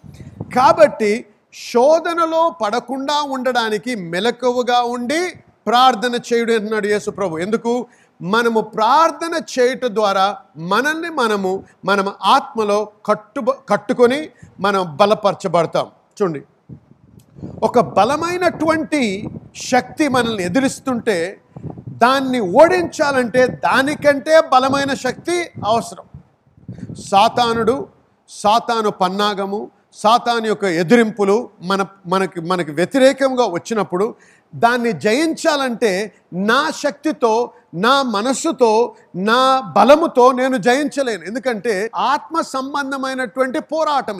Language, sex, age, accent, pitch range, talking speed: Telugu, male, 50-69, native, 210-275 Hz, 80 wpm